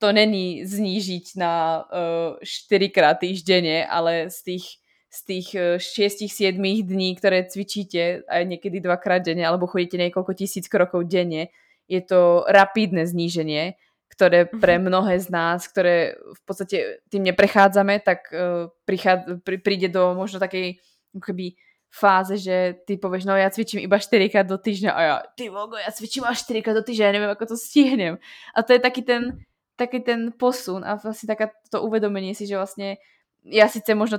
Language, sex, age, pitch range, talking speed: Slovak, female, 20-39, 180-215 Hz, 170 wpm